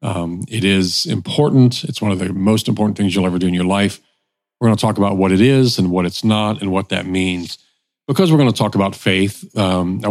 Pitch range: 95-120 Hz